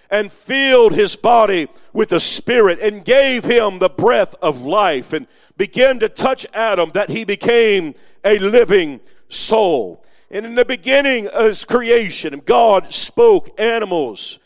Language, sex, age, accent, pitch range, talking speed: English, male, 50-69, American, 185-260 Hz, 145 wpm